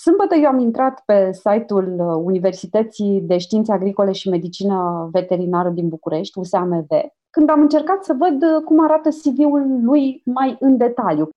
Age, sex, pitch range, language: 30-49, female, 195-305 Hz, Romanian